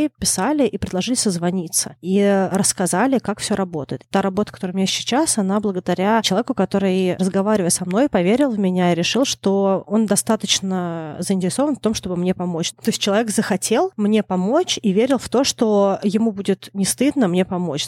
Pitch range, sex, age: 180-215 Hz, female, 20-39